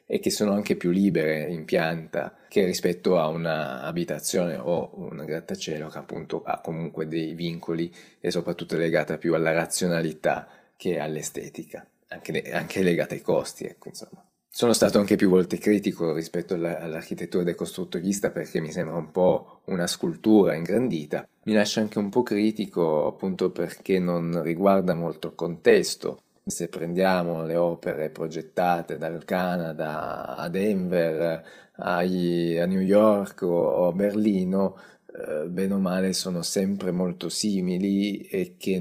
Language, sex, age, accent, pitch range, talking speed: Italian, male, 30-49, native, 85-95 Hz, 145 wpm